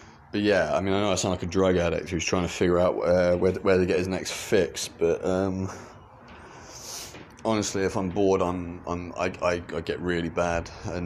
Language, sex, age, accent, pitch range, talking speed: English, male, 30-49, British, 85-95 Hz, 215 wpm